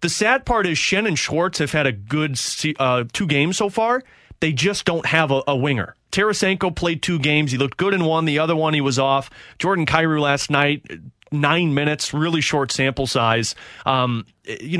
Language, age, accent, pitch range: English, 30-49, American, 130-160 Hz